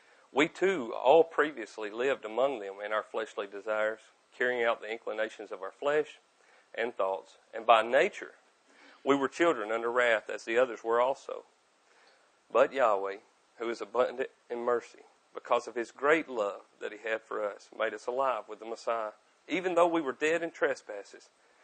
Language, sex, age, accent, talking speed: English, male, 40-59, American, 175 wpm